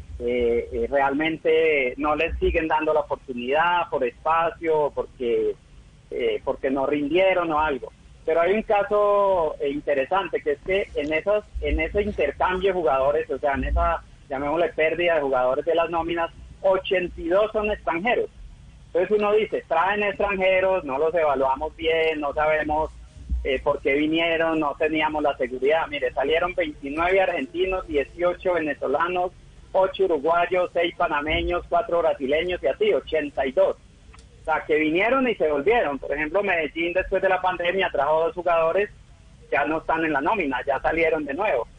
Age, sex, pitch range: 30-49, male, 145-190 Hz